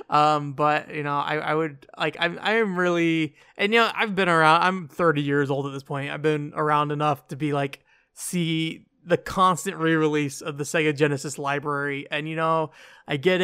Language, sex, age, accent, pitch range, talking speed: English, male, 20-39, American, 135-155 Hz, 200 wpm